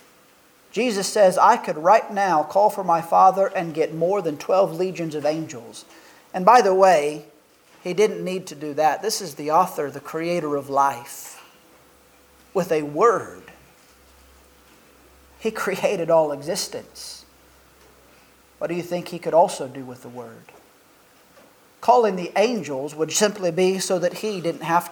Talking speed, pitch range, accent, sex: 155 wpm, 155-210 Hz, American, male